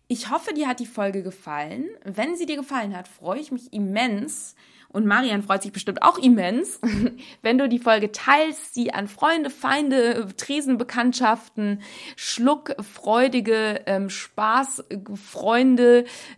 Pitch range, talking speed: 195-250 Hz, 135 wpm